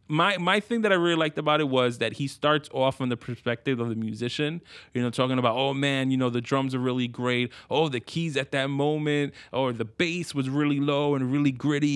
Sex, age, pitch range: male, 20-39, 125-155 Hz